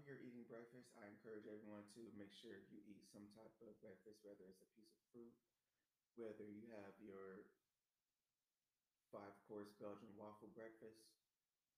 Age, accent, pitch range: 20-39, American, 105-120 Hz